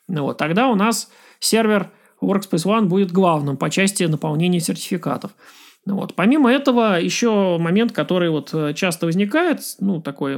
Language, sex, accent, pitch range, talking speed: Russian, male, native, 170-220 Hz, 140 wpm